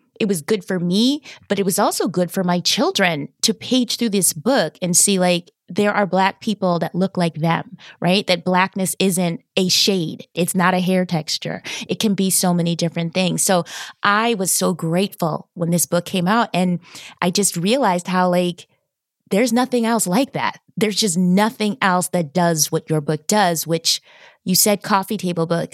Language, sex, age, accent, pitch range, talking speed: English, female, 20-39, American, 175-220 Hz, 195 wpm